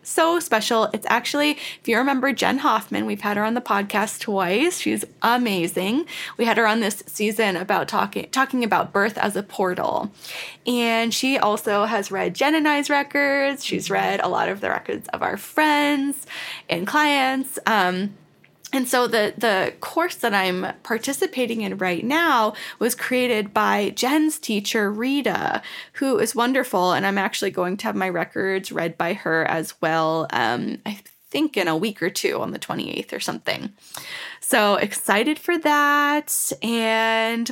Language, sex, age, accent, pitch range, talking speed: English, female, 10-29, American, 190-265 Hz, 170 wpm